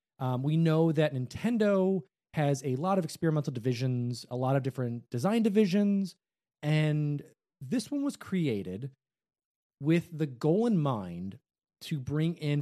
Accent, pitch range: American, 130-180 Hz